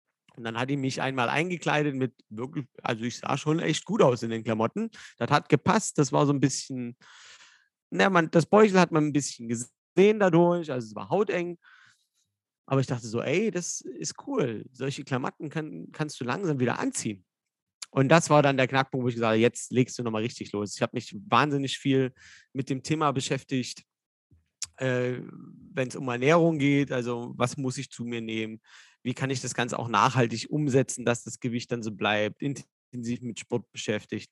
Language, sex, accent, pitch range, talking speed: German, male, German, 120-145 Hz, 200 wpm